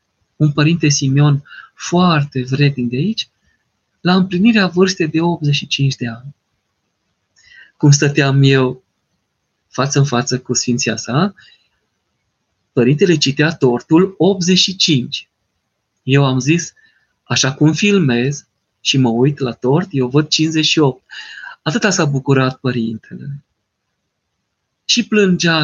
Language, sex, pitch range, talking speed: Romanian, male, 135-180 Hz, 110 wpm